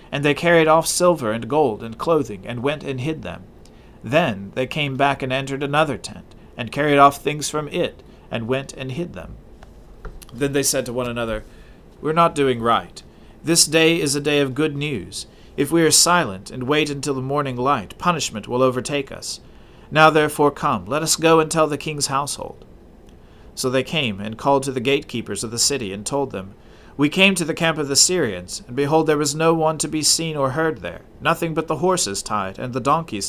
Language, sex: English, male